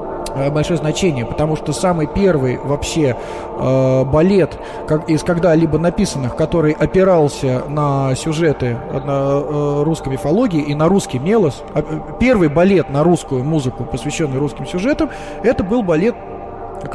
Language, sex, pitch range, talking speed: Russian, male, 145-185 Hz, 125 wpm